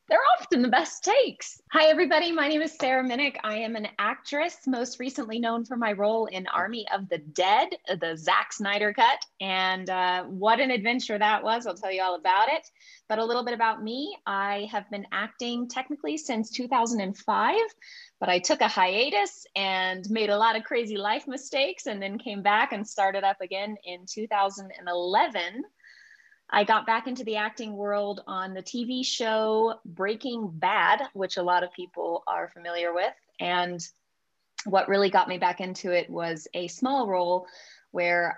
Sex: female